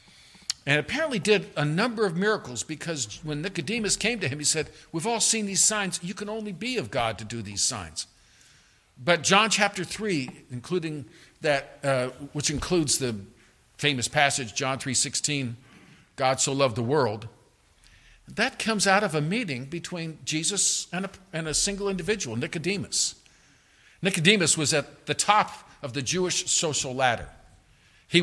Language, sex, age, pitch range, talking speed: English, male, 50-69, 135-195 Hz, 160 wpm